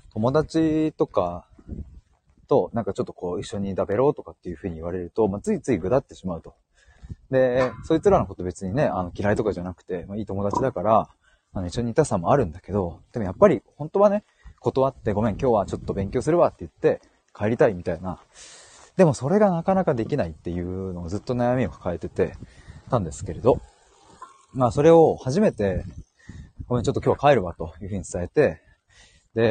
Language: Japanese